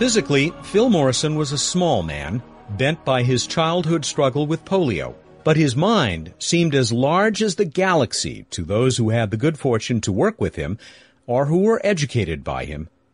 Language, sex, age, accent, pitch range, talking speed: English, male, 50-69, American, 120-180 Hz, 185 wpm